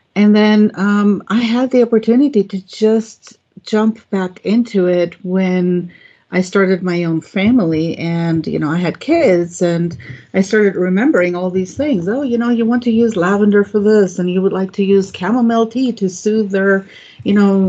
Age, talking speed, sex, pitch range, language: 50-69, 185 wpm, female, 165-205 Hz, English